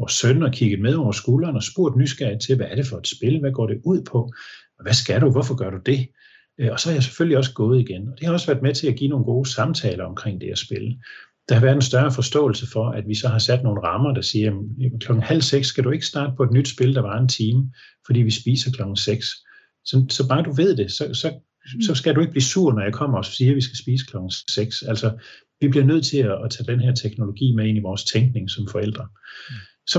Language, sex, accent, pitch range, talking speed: Danish, male, native, 110-135 Hz, 265 wpm